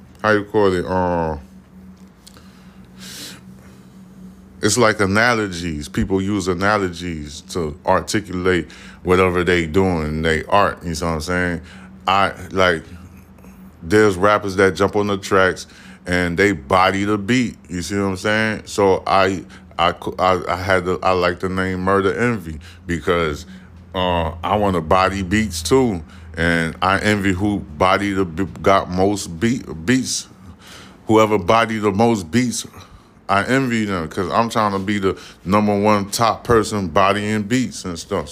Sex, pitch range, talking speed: male, 85-100 Hz, 145 wpm